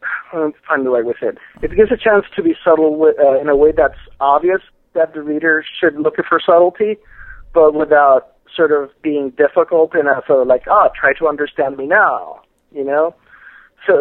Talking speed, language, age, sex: 195 wpm, English, 50-69, male